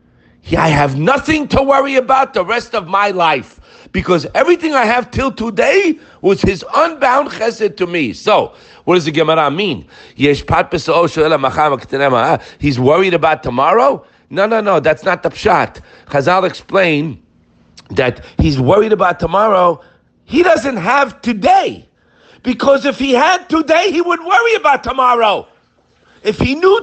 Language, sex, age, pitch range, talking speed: English, male, 50-69, 160-245 Hz, 145 wpm